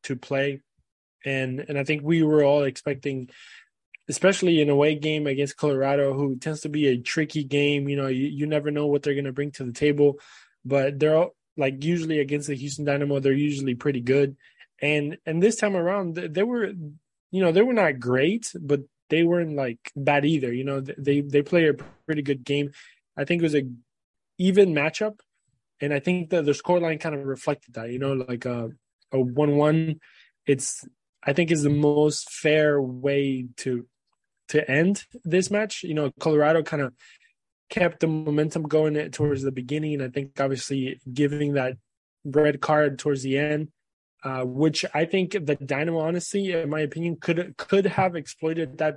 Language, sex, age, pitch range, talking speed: English, male, 20-39, 140-160 Hz, 190 wpm